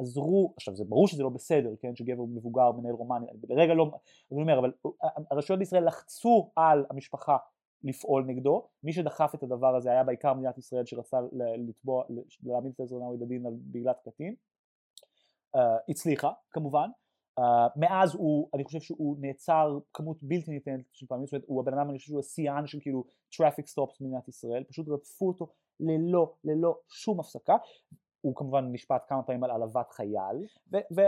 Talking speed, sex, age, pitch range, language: 160 wpm, male, 30-49, 135-185 Hz, Hebrew